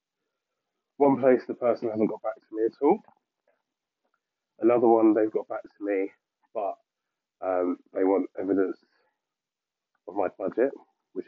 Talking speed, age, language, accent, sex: 140 wpm, 30-49, English, British, male